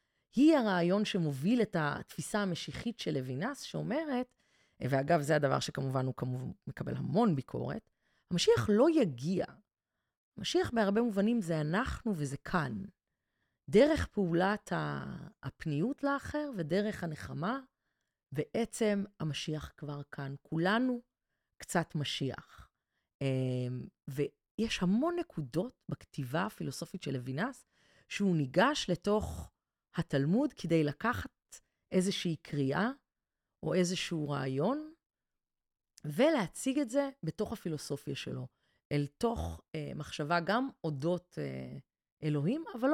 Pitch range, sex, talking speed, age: 150-220 Hz, female, 105 wpm, 30-49